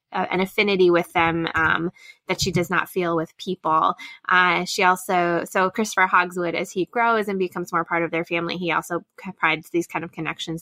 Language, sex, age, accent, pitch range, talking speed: English, female, 20-39, American, 175-225 Hz, 200 wpm